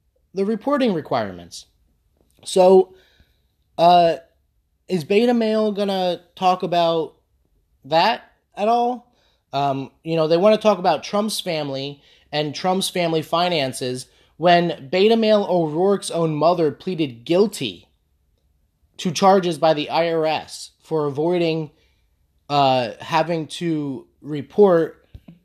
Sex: male